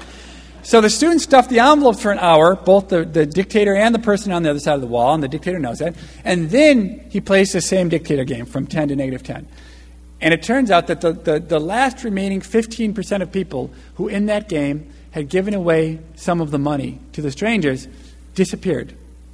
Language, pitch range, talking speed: English, 140-205 Hz, 215 wpm